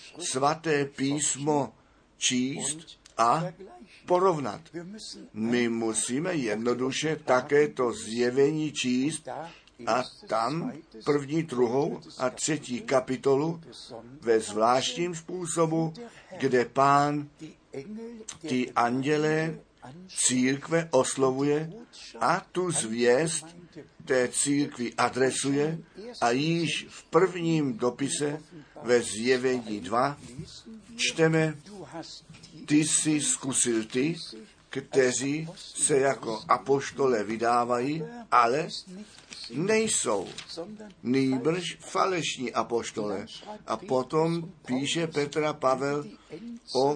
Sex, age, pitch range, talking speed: male, 60-79, 130-160 Hz, 80 wpm